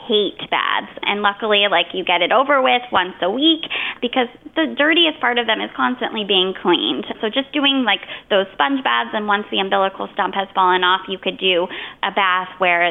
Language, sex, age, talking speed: English, female, 20-39, 200 wpm